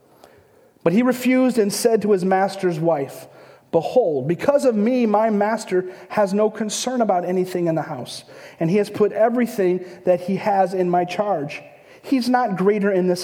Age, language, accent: 40-59, English, American